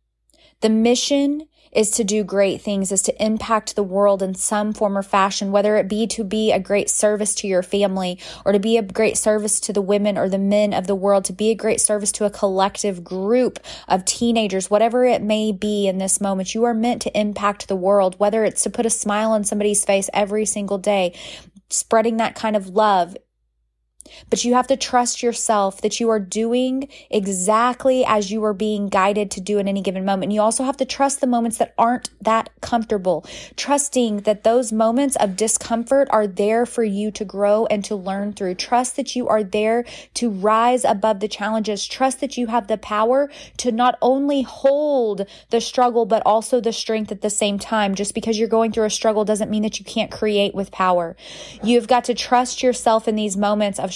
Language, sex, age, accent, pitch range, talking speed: English, female, 20-39, American, 205-235 Hz, 210 wpm